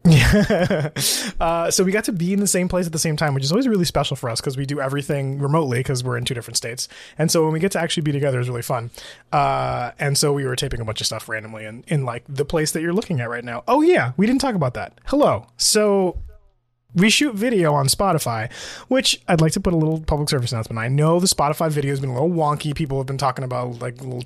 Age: 20-39